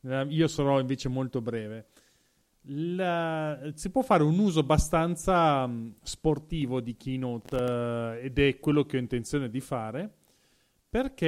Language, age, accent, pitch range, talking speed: Italian, 40-59, native, 125-165 Hz, 130 wpm